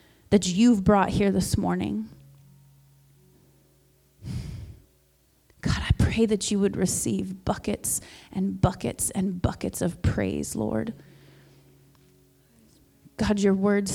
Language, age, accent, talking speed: English, 30-49, American, 105 wpm